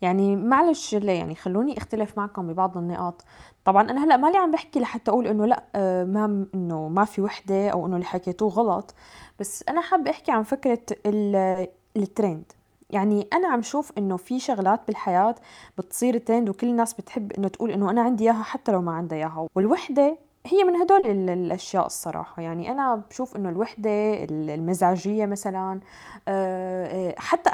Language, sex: Arabic, female